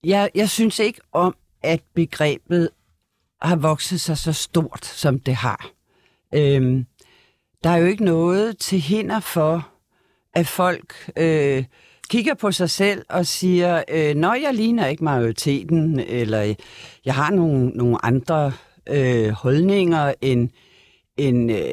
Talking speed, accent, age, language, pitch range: 125 wpm, native, 60-79, Danish, 130-180 Hz